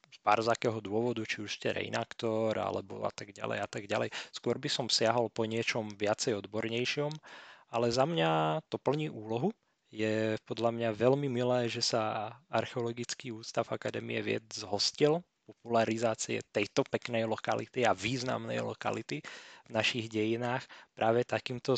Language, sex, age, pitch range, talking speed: Slovak, male, 20-39, 110-130 Hz, 140 wpm